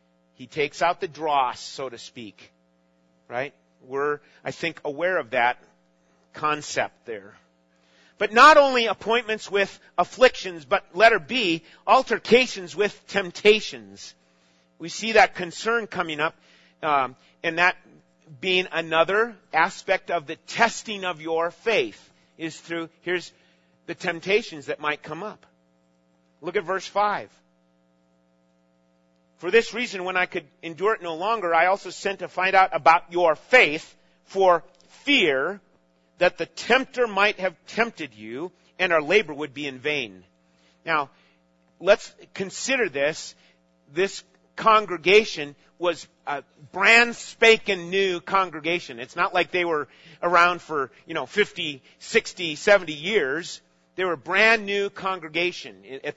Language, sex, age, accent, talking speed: English, male, 40-59, American, 135 wpm